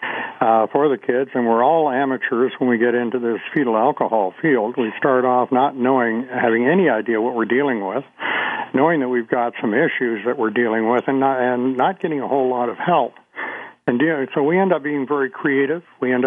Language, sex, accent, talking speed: English, male, American, 220 wpm